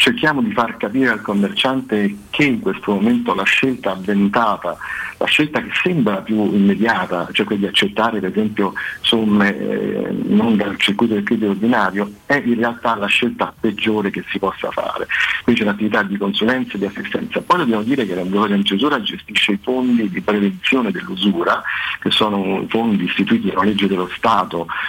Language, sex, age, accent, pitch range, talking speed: Italian, male, 50-69, native, 100-125 Hz, 175 wpm